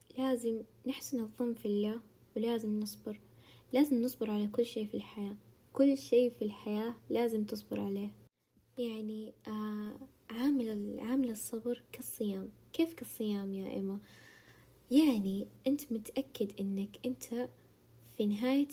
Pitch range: 210-245 Hz